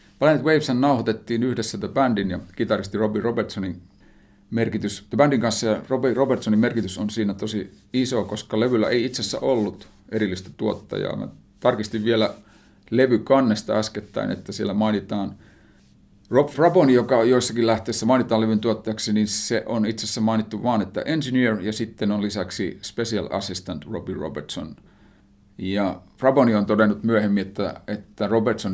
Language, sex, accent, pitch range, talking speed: Finnish, male, native, 100-115 Hz, 145 wpm